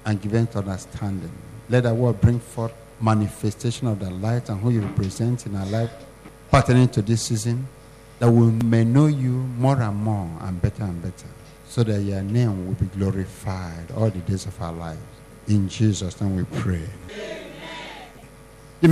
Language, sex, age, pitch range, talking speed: English, male, 50-69, 105-140 Hz, 175 wpm